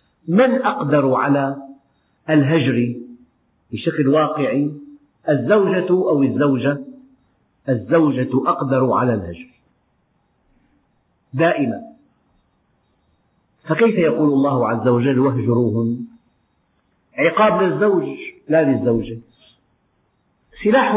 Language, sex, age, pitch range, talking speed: Arabic, male, 50-69, 130-185 Hz, 70 wpm